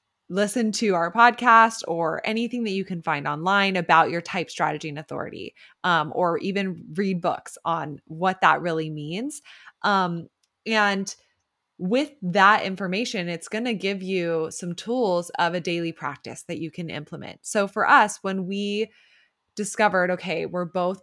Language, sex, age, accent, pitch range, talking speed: English, female, 20-39, American, 165-195 Hz, 160 wpm